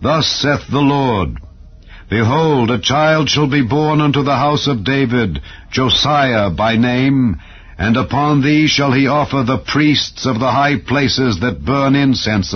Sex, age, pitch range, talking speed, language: male, 60-79, 85-125 Hz, 160 wpm, English